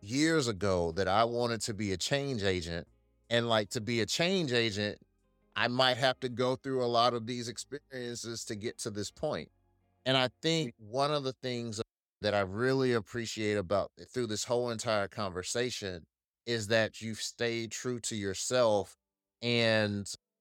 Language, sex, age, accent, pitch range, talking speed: English, male, 30-49, American, 105-130 Hz, 175 wpm